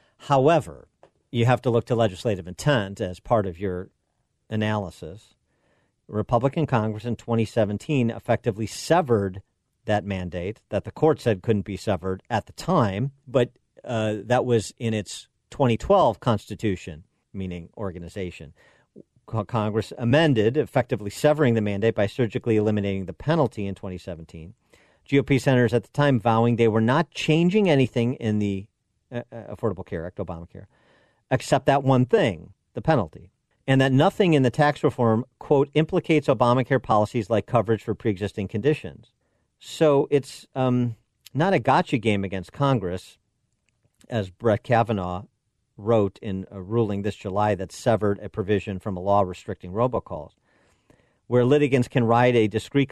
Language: English